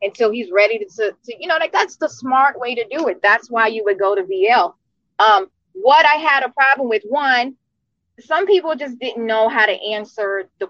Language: English